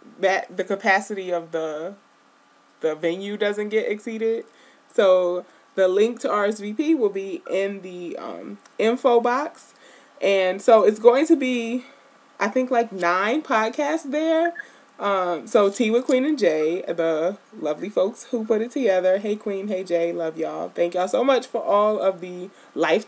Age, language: 20-39, English